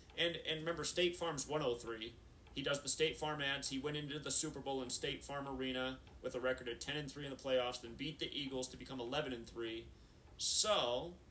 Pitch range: 130-155 Hz